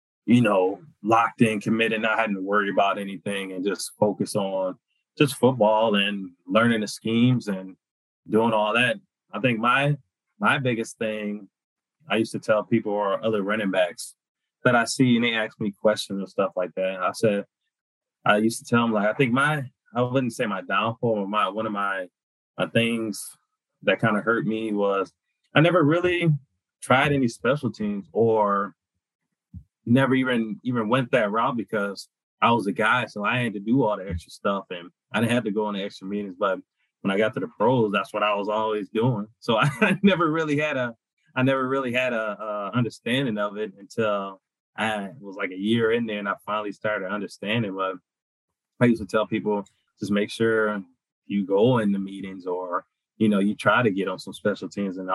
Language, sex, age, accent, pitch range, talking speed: English, male, 20-39, American, 100-120 Hz, 200 wpm